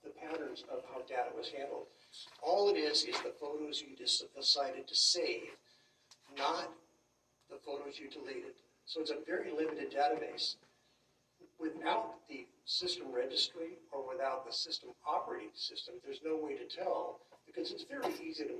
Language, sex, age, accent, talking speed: English, male, 50-69, American, 155 wpm